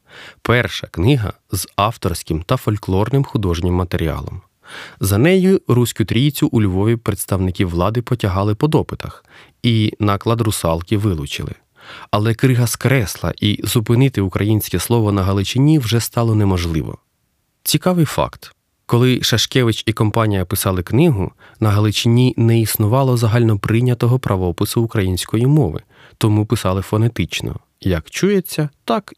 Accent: native